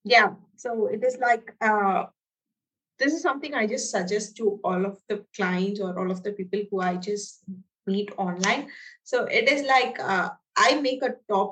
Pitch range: 195-240 Hz